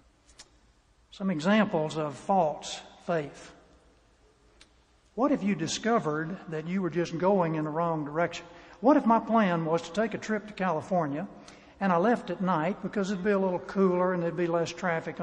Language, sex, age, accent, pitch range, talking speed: English, male, 60-79, American, 170-220 Hz, 175 wpm